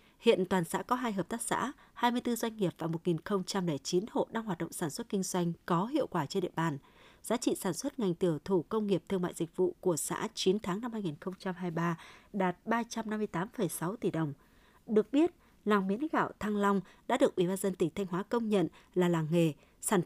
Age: 20-39